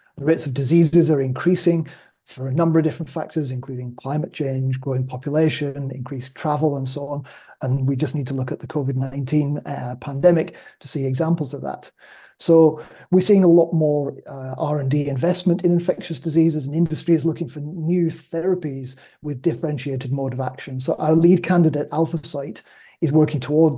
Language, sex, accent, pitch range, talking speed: English, male, British, 135-165 Hz, 180 wpm